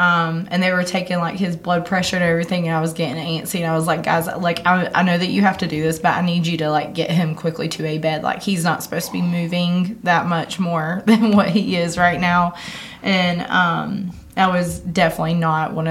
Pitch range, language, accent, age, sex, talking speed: 165-185 Hz, English, American, 20-39, female, 250 wpm